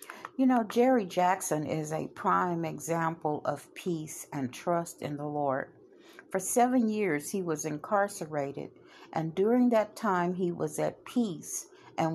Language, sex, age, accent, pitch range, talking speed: English, female, 60-79, American, 160-220 Hz, 150 wpm